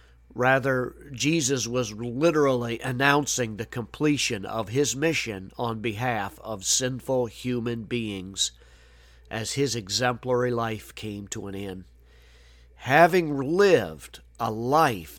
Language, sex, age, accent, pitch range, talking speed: English, male, 50-69, American, 100-135 Hz, 110 wpm